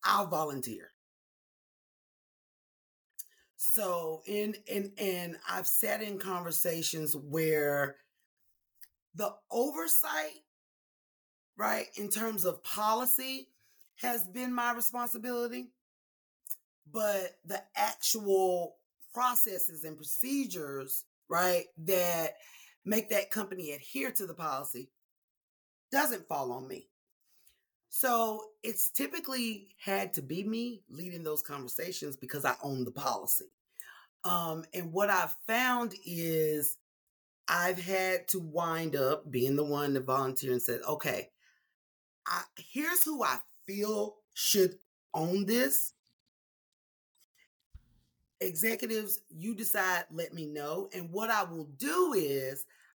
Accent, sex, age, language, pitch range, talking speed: American, female, 30-49, English, 155-225 Hz, 110 wpm